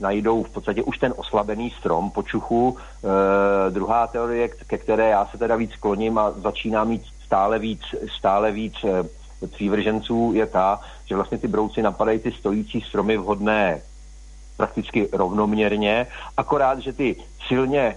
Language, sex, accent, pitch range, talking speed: Czech, male, native, 105-125 Hz, 145 wpm